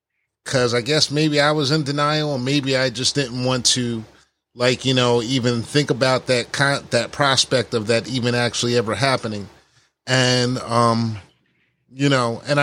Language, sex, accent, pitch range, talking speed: English, male, American, 120-140 Hz, 165 wpm